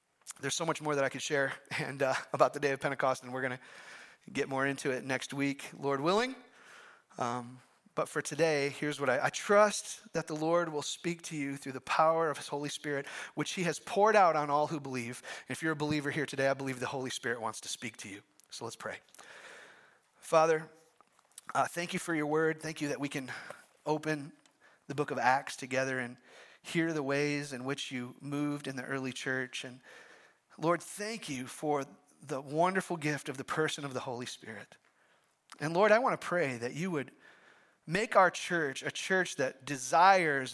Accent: American